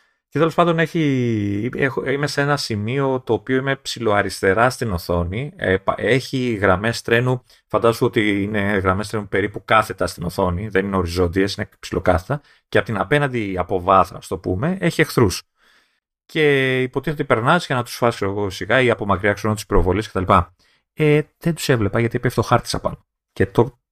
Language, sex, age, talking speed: Greek, male, 30-49, 170 wpm